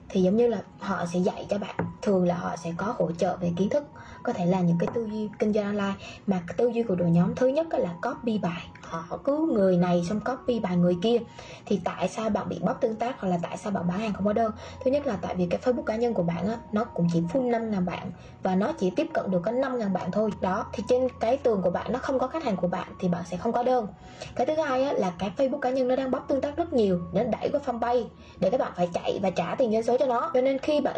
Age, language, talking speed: 20-39, Vietnamese, 295 wpm